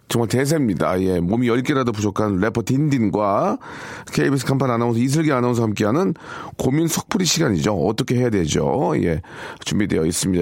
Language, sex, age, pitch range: Korean, male, 40-59, 105-145 Hz